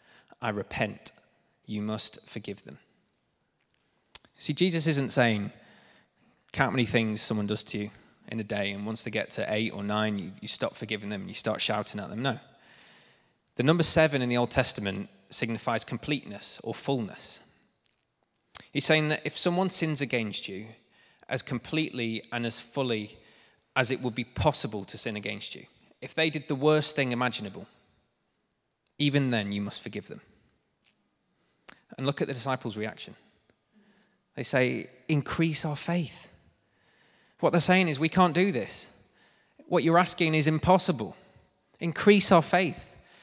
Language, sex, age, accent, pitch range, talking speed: English, male, 20-39, British, 115-155 Hz, 155 wpm